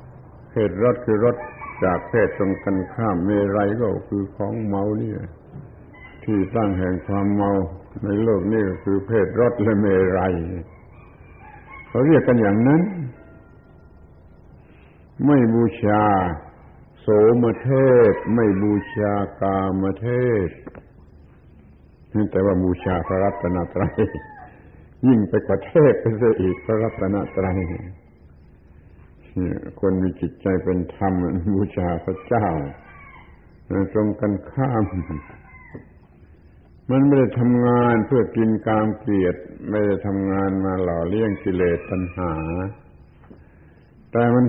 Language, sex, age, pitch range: Thai, male, 70-89, 90-115 Hz